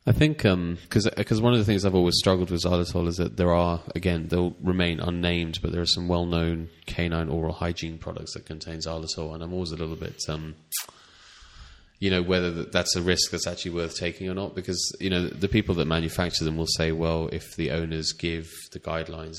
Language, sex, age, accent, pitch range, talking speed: English, male, 30-49, British, 80-90 Hz, 215 wpm